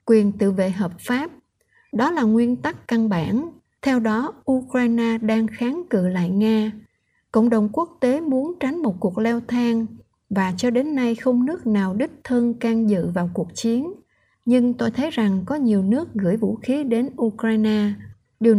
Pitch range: 205-250 Hz